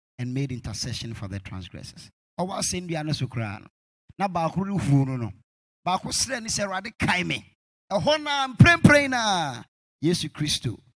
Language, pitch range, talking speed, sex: English, 145-230 Hz, 130 wpm, male